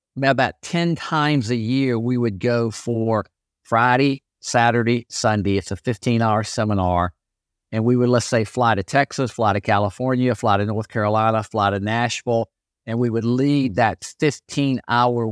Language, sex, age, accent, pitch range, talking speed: English, male, 50-69, American, 110-140 Hz, 155 wpm